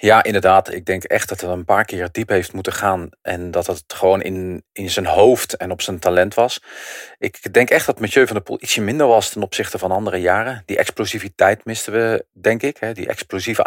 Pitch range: 90-115 Hz